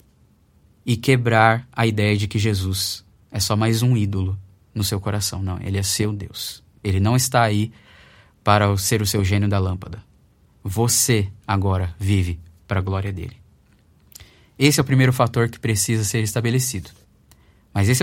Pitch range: 100-130 Hz